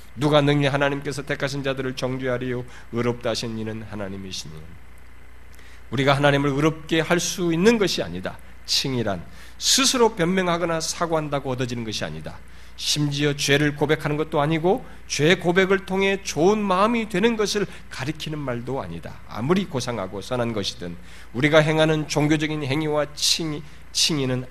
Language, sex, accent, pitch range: Korean, male, native, 105-165 Hz